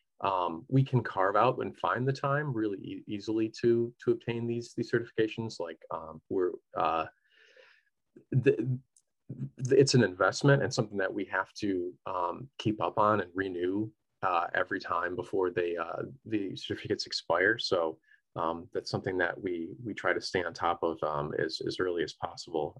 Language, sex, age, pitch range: English, male, 30-49, 100-140 Hz